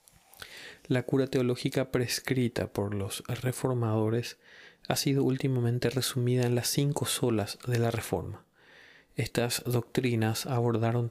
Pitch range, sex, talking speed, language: 115-135 Hz, male, 115 wpm, Spanish